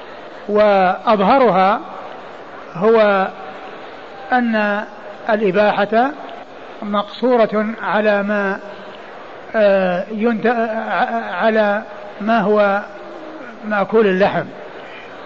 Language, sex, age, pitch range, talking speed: Arabic, male, 60-79, 195-225 Hz, 50 wpm